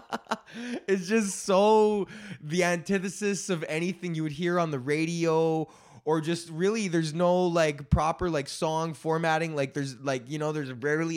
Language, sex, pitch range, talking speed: English, male, 140-170 Hz, 160 wpm